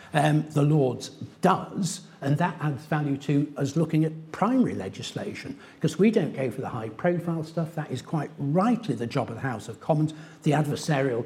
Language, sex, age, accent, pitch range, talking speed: English, male, 60-79, British, 135-185 Hz, 190 wpm